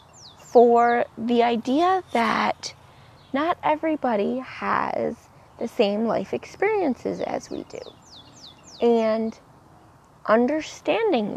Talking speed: 85 wpm